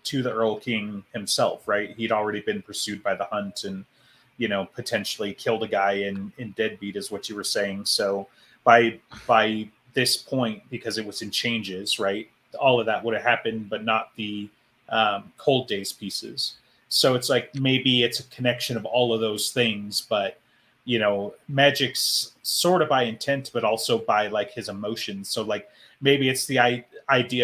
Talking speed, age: 185 wpm, 30-49